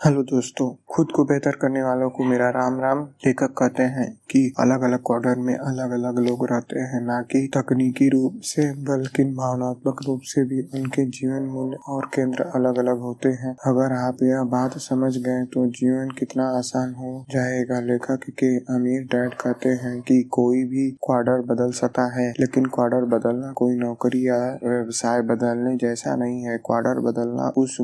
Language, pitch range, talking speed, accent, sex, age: Hindi, 125-135 Hz, 175 wpm, native, male, 20-39